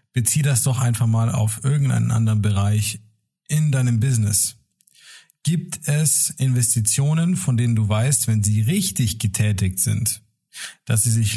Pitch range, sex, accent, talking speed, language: 110-145 Hz, male, German, 145 wpm, German